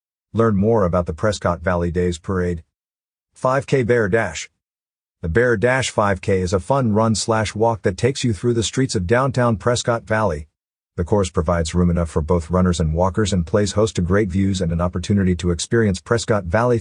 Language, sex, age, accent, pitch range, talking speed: English, male, 50-69, American, 90-115 Hz, 195 wpm